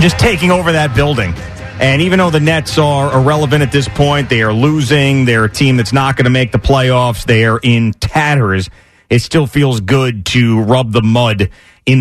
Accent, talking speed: American, 200 wpm